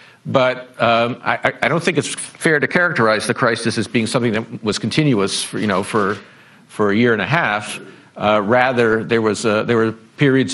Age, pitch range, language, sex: 50-69, 105-125 Hz, Korean, male